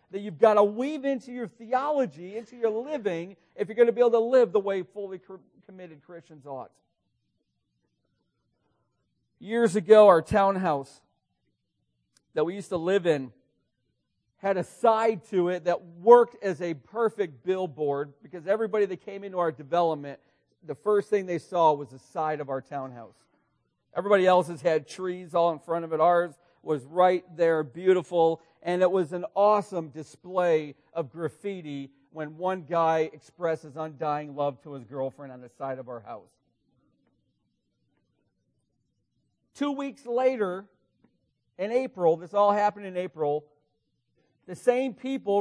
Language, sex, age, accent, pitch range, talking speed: English, male, 50-69, American, 155-205 Hz, 155 wpm